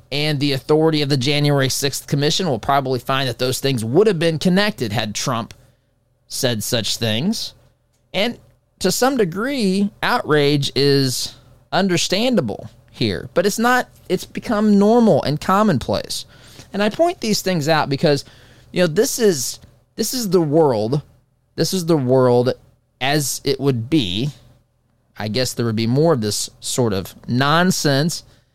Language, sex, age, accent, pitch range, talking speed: English, male, 20-39, American, 120-180 Hz, 155 wpm